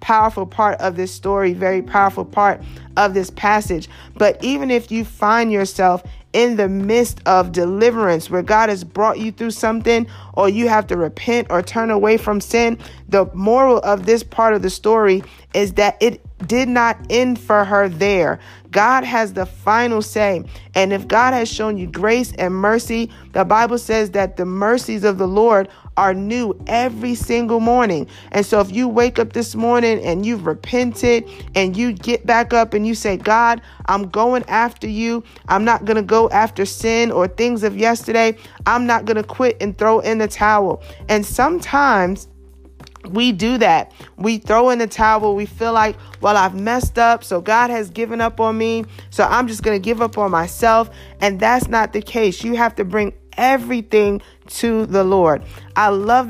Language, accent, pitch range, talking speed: English, American, 195-230 Hz, 190 wpm